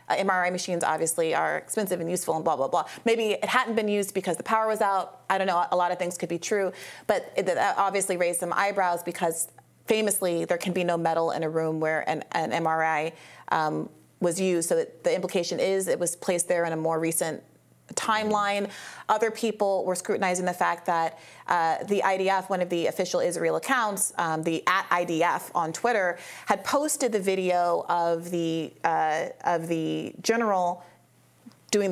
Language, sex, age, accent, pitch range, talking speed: English, female, 30-49, American, 170-205 Hz, 190 wpm